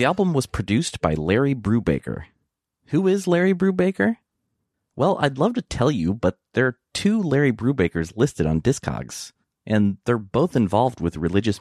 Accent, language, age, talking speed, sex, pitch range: American, English, 30-49, 165 wpm, male, 90-130 Hz